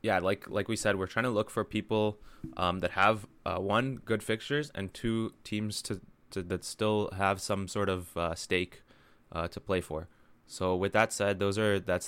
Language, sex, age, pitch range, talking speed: English, male, 20-39, 85-105 Hz, 210 wpm